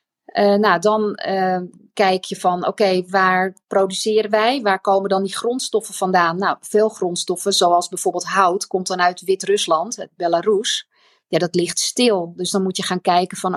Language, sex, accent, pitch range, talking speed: Dutch, female, Dutch, 185-225 Hz, 175 wpm